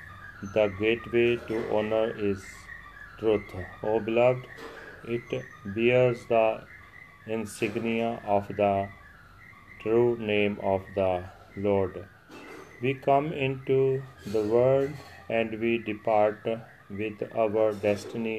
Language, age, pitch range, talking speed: Punjabi, 40-59, 100-120 Hz, 100 wpm